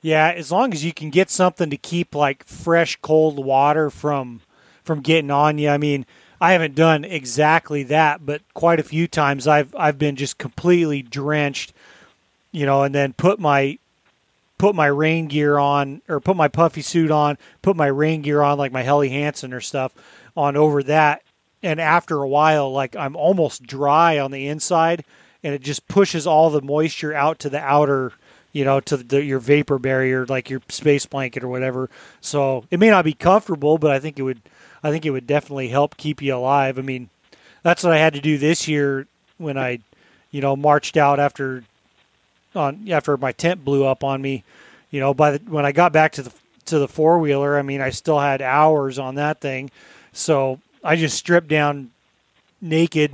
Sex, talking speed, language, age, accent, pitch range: male, 200 wpm, English, 30-49, American, 135-155 Hz